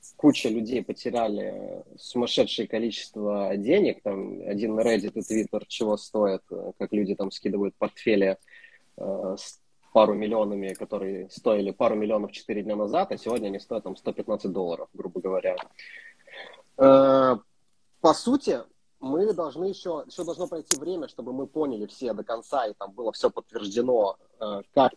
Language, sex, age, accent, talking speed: Russian, male, 20-39, native, 140 wpm